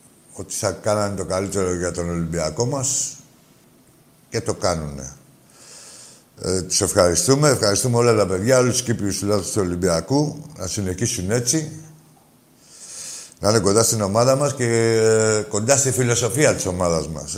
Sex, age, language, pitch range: male, 60-79, Greek, 95-125 Hz